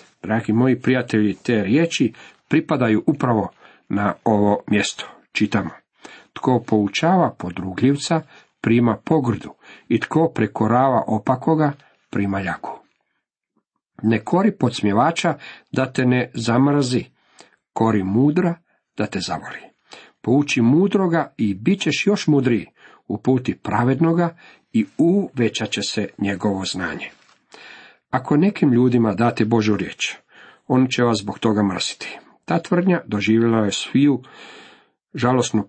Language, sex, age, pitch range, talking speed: Croatian, male, 50-69, 110-140 Hz, 115 wpm